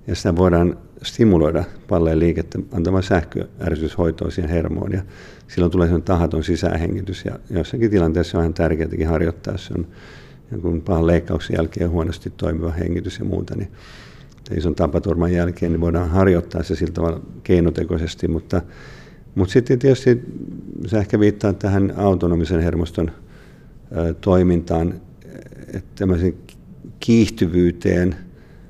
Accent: native